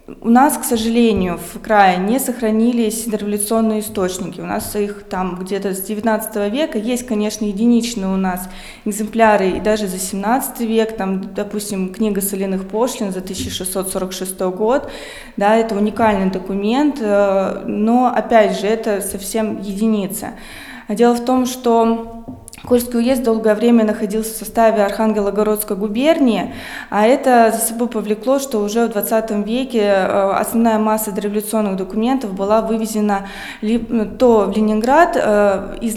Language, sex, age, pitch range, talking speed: Russian, female, 20-39, 205-230 Hz, 135 wpm